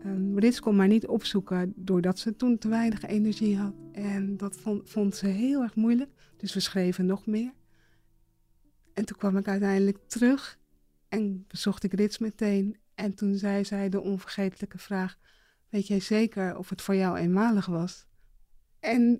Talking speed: 165 wpm